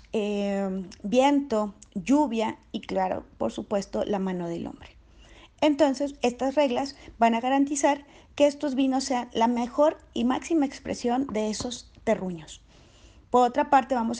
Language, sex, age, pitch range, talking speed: Spanish, female, 30-49, 220-285 Hz, 140 wpm